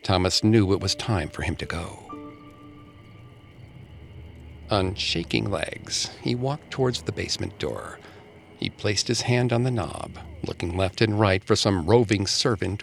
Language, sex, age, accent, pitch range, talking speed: English, male, 50-69, American, 85-115 Hz, 155 wpm